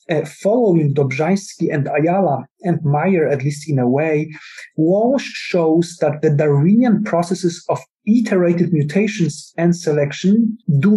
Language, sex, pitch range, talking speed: English, male, 150-190 Hz, 130 wpm